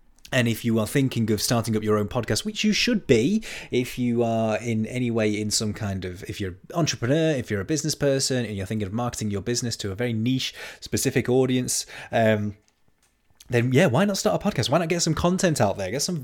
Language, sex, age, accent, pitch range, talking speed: English, male, 20-39, British, 105-130 Hz, 235 wpm